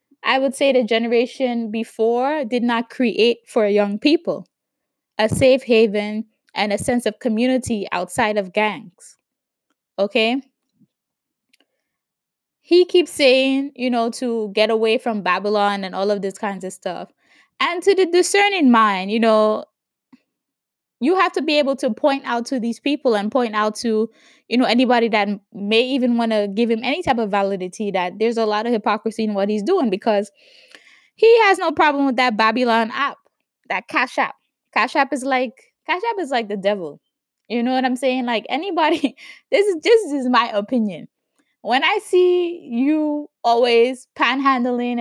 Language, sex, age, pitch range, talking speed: English, female, 20-39, 215-275 Hz, 170 wpm